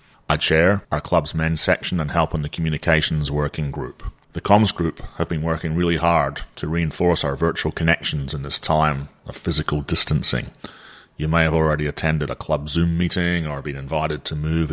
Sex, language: male, English